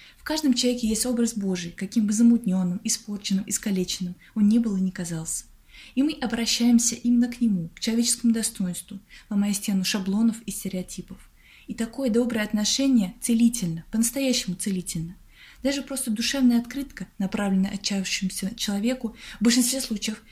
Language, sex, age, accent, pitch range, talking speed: Russian, female, 20-39, native, 195-240 Hz, 140 wpm